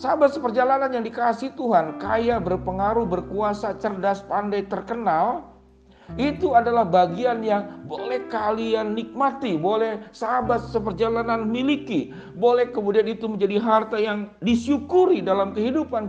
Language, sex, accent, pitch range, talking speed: Indonesian, male, native, 180-235 Hz, 115 wpm